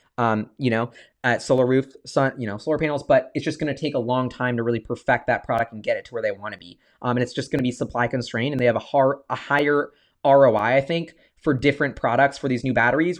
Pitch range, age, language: 130-185 Hz, 20-39, English